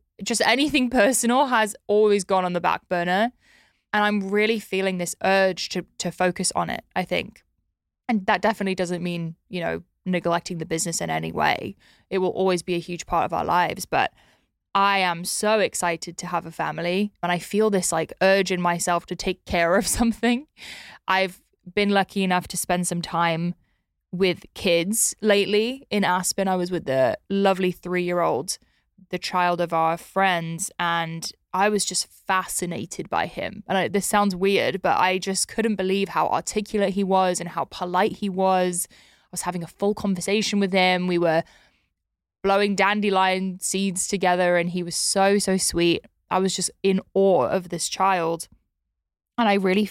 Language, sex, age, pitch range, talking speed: English, female, 20-39, 175-200 Hz, 180 wpm